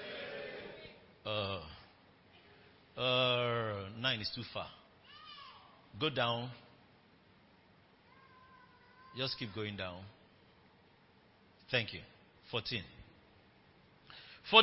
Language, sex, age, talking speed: English, male, 50-69, 65 wpm